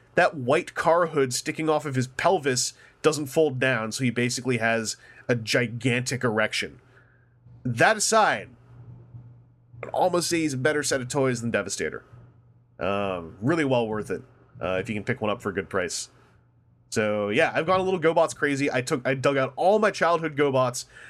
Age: 30-49